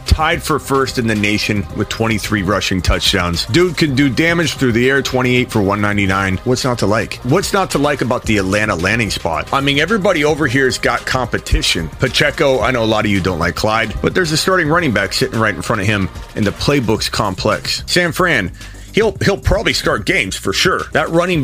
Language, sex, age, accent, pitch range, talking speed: English, male, 30-49, American, 105-145 Hz, 220 wpm